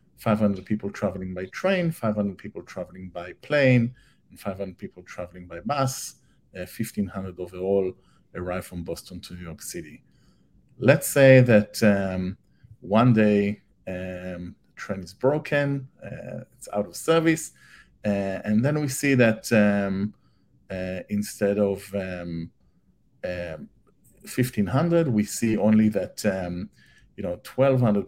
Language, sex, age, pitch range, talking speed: English, male, 50-69, 95-115 Hz, 135 wpm